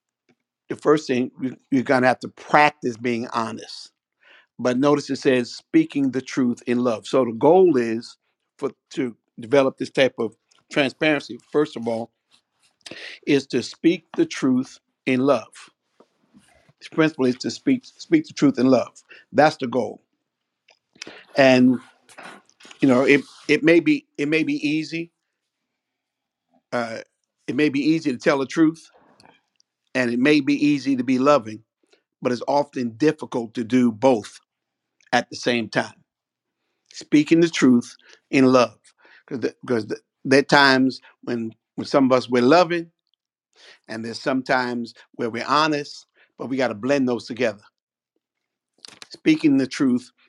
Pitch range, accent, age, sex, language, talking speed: 125-160 Hz, American, 50-69, male, English, 150 wpm